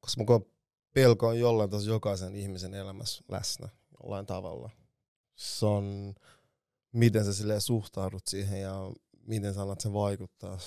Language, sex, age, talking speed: Finnish, male, 20-39, 130 wpm